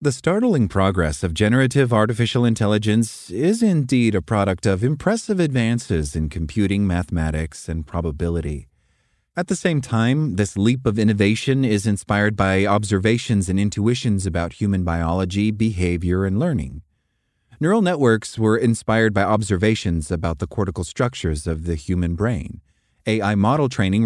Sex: male